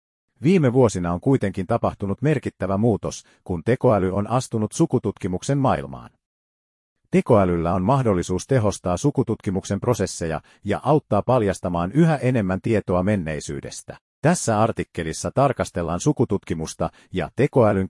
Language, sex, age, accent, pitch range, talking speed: Finnish, male, 50-69, native, 90-125 Hz, 105 wpm